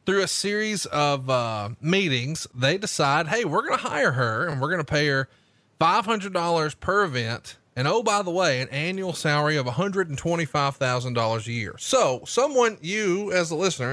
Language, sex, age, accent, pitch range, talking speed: English, male, 30-49, American, 135-200 Hz, 175 wpm